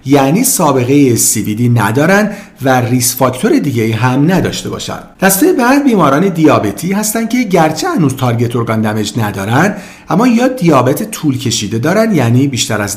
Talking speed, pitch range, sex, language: 150 wpm, 125-195 Hz, male, Persian